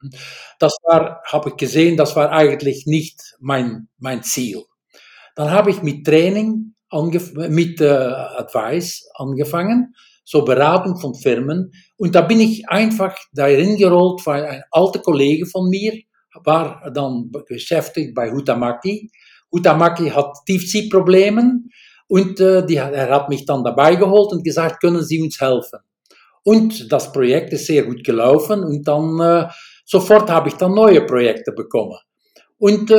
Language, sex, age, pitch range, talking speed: German, male, 60-79, 150-205 Hz, 145 wpm